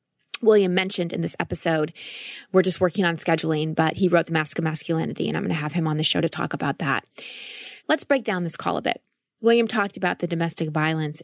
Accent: American